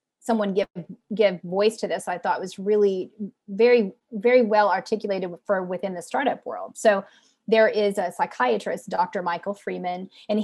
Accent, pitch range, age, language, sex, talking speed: American, 185-220 Hz, 30-49, English, female, 160 wpm